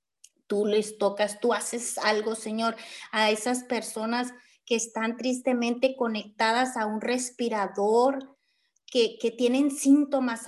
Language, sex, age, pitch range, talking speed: Spanish, female, 30-49, 215-265 Hz, 120 wpm